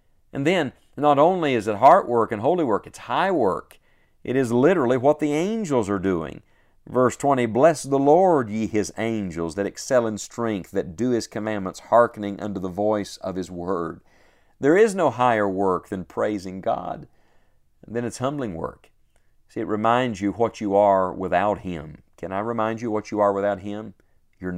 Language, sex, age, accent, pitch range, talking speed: English, male, 50-69, American, 100-120 Hz, 185 wpm